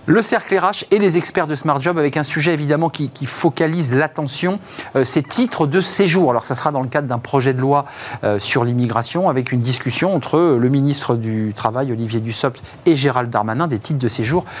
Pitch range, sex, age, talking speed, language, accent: 120-155 Hz, male, 40-59, 215 wpm, French, French